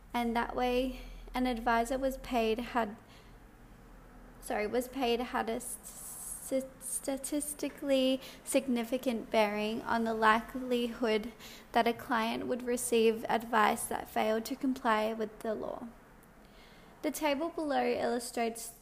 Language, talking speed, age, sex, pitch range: English, 115 wpm, 20-39, female, 225-255 Hz